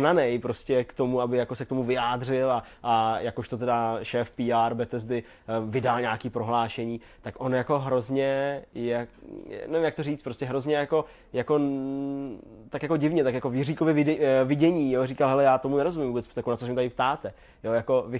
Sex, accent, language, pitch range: male, native, Czech, 120-135 Hz